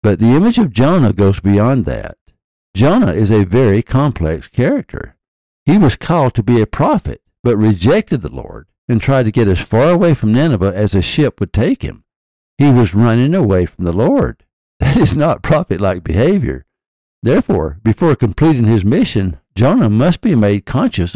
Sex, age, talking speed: male, 60-79, 175 wpm